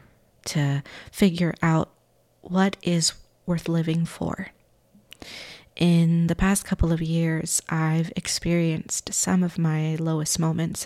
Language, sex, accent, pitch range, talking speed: English, female, American, 160-185 Hz, 115 wpm